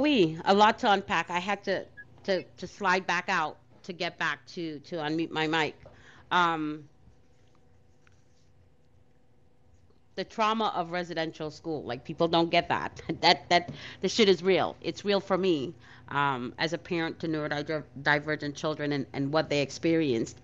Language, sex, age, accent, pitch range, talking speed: English, female, 40-59, American, 140-175 Hz, 160 wpm